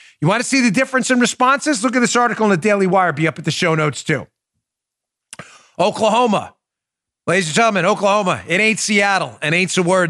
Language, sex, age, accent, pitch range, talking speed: English, male, 40-59, American, 125-185 Hz, 210 wpm